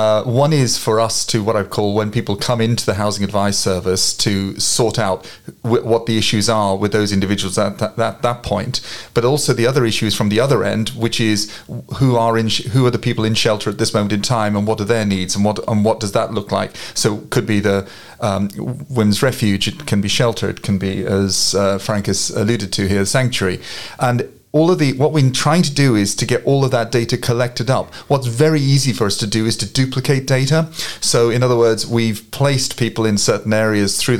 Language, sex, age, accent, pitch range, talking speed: English, male, 40-59, British, 105-130 Hz, 240 wpm